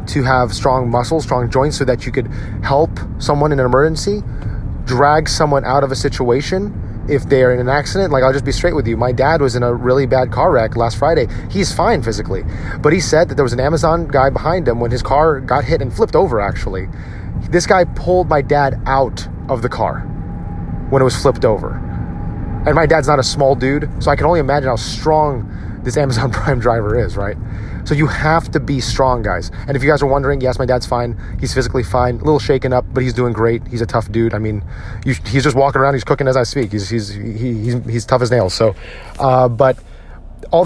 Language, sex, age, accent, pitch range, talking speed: English, male, 30-49, American, 110-140 Hz, 230 wpm